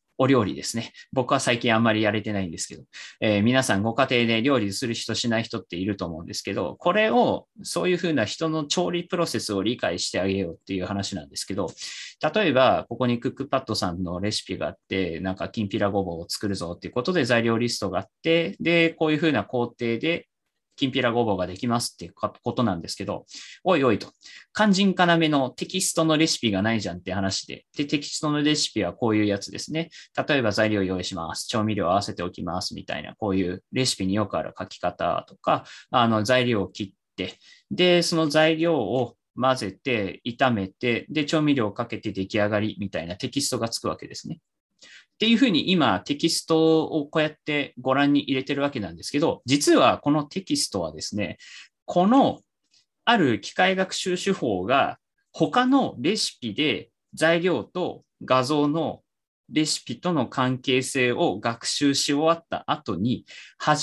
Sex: male